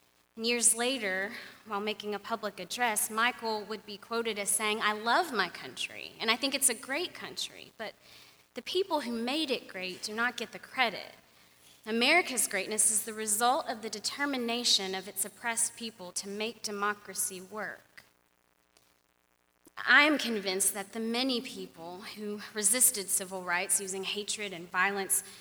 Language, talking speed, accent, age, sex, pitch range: English, 160 wpm, American, 20-39, female, 195-250 Hz